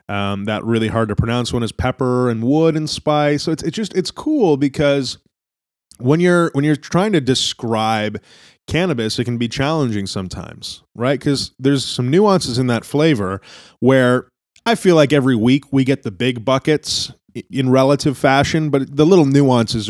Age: 20-39